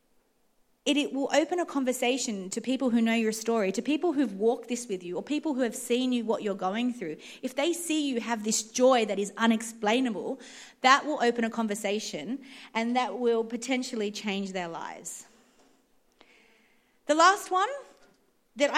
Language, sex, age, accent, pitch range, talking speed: English, female, 30-49, Australian, 205-265 Hz, 175 wpm